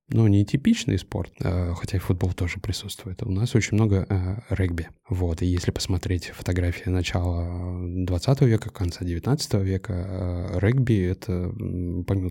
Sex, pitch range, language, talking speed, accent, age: male, 90-110 Hz, Russian, 145 wpm, native, 20-39